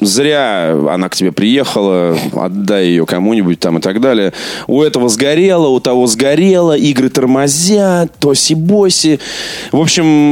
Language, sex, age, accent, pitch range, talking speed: Russian, male, 20-39, native, 95-145 Hz, 135 wpm